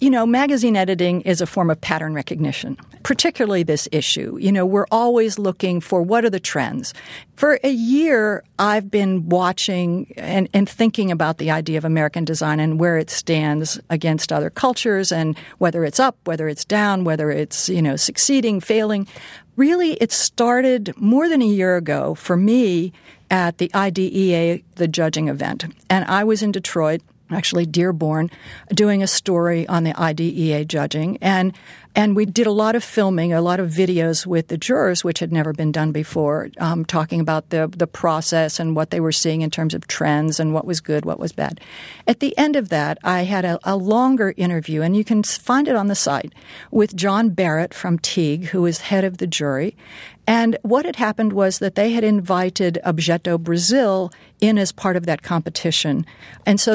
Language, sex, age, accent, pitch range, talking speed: English, female, 50-69, American, 165-210 Hz, 190 wpm